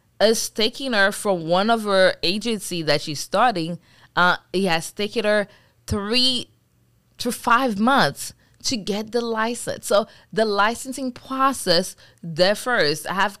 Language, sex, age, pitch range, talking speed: English, female, 20-39, 175-235 Hz, 140 wpm